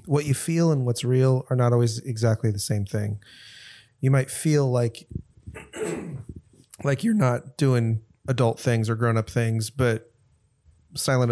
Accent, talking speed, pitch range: American, 150 wpm, 110-130 Hz